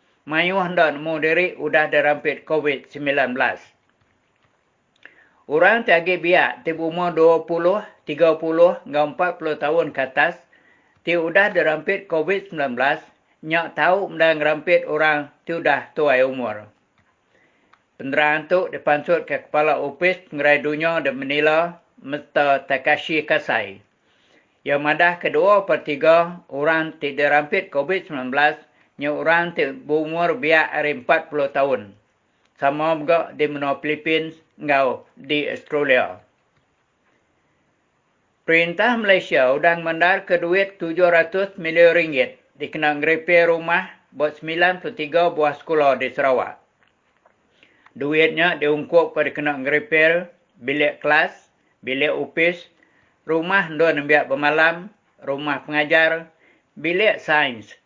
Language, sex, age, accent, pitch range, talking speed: English, male, 50-69, Indonesian, 150-170 Hz, 110 wpm